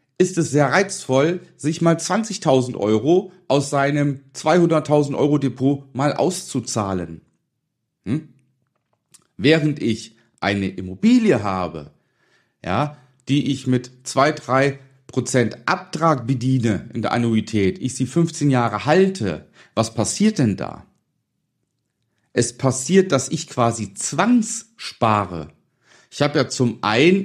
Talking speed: 110 wpm